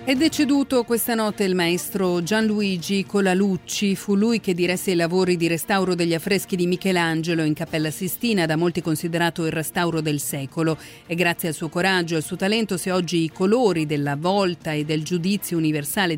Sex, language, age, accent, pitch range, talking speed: female, Italian, 40-59, native, 165-215 Hz, 180 wpm